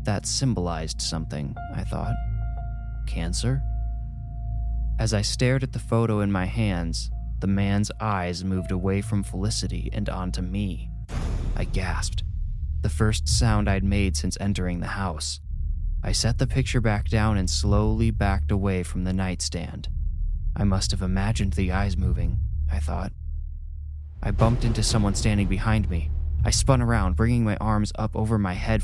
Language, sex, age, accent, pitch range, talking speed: English, male, 20-39, American, 85-105 Hz, 155 wpm